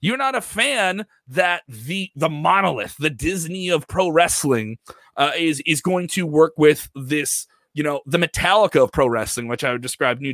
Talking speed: 190 wpm